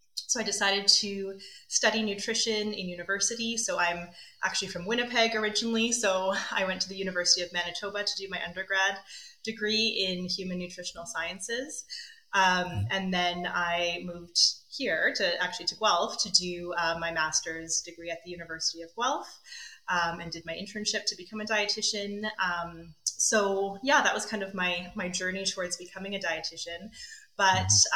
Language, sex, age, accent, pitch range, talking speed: English, female, 20-39, American, 170-200 Hz, 165 wpm